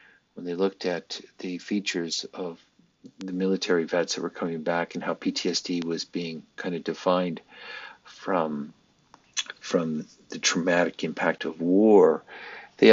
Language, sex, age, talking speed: English, male, 50-69, 140 wpm